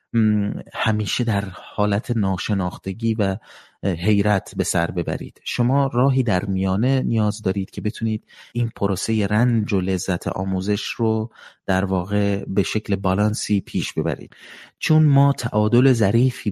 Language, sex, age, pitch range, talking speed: Persian, male, 30-49, 95-110 Hz, 125 wpm